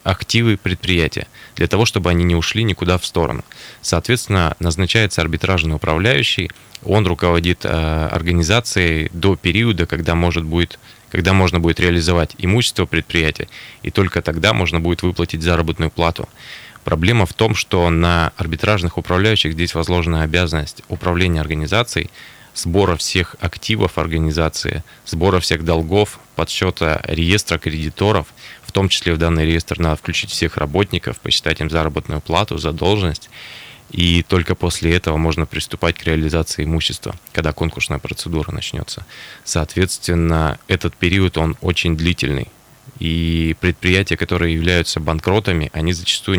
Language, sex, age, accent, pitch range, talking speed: Russian, male, 20-39, native, 80-95 Hz, 130 wpm